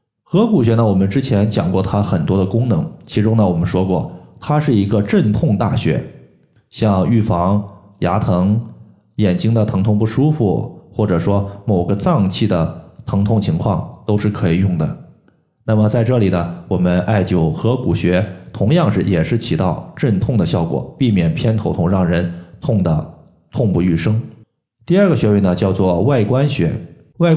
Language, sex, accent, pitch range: Chinese, male, native, 95-115 Hz